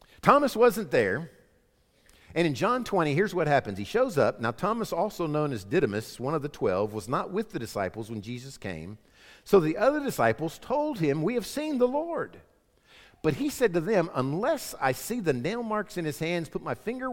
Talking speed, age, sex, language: 205 wpm, 50-69, male, English